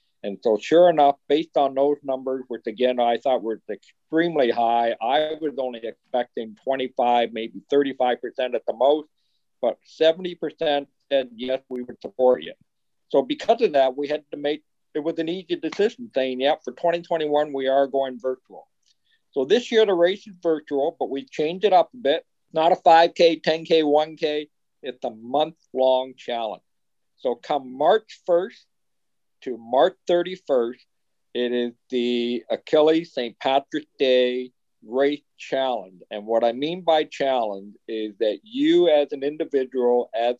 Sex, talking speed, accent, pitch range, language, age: male, 160 wpm, American, 125-160 Hz, English, 50-69